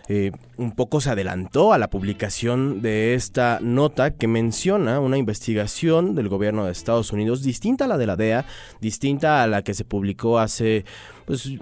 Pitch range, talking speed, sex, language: 105-130 Hz, 175 wpm, male, Spanish